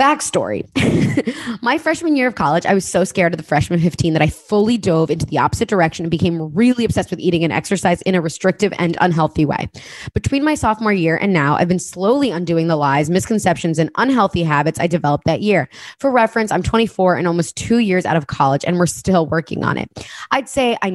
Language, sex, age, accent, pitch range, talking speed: English, female, 20-39, American, 165-225 Hz, 220 wpm